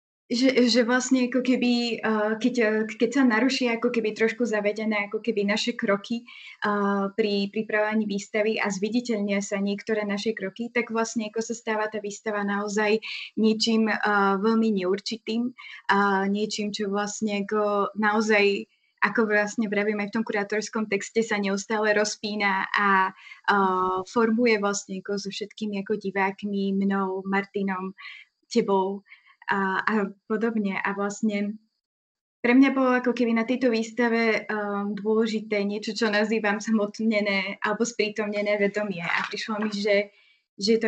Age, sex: 20-39, female